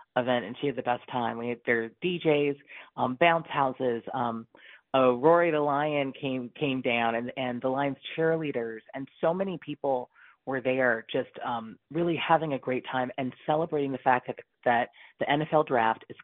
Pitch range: 120-145 Hz